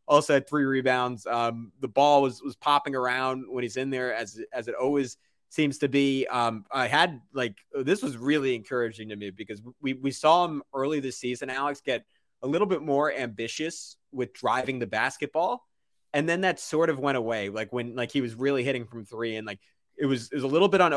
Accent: American